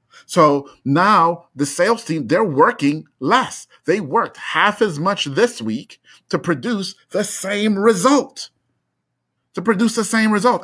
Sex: male